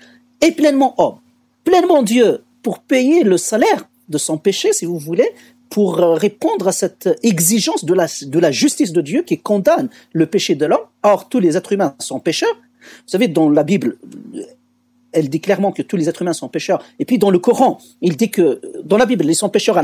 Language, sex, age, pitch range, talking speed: French, male, 50-69, 175-265 Hz, 210 wpm